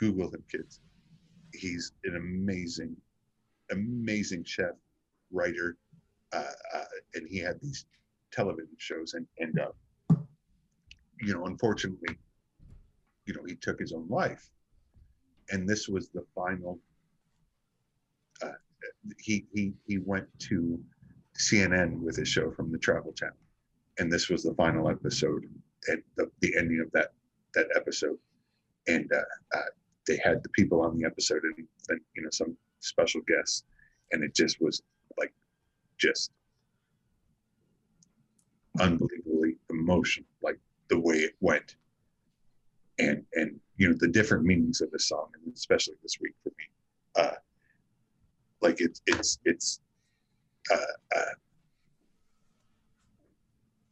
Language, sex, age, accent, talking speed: English, male, 50-69, American, 130 wpm